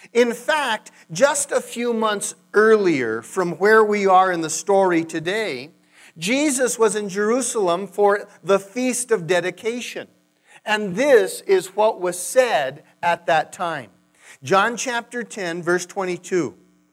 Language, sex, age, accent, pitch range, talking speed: English, male, 50-69, American, 175-245 Hz, 135 wpm